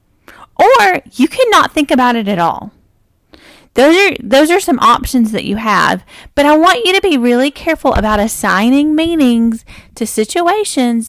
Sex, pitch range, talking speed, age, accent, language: female, 210-295 Hz, 155 wpm, 30-49, American, English